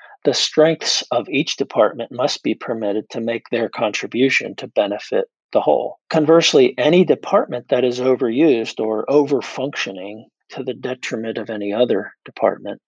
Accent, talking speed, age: American, 145 wpm, 50-69